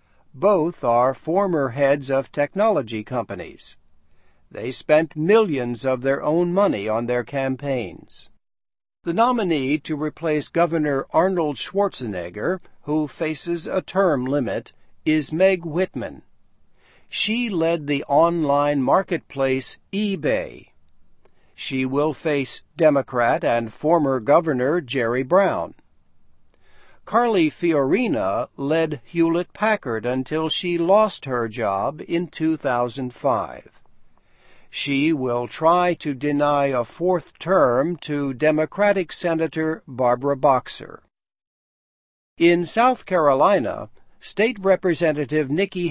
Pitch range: 130-170 Hz